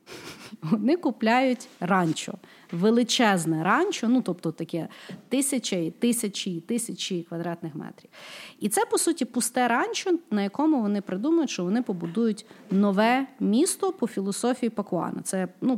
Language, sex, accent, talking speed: Ukrainian, female, native, 125 wpm